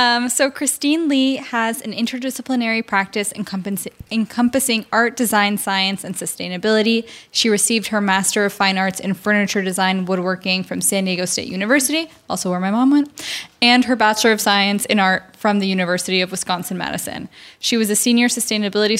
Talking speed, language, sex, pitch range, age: 165 wpm, English, female, 195-235 Hz, 10-29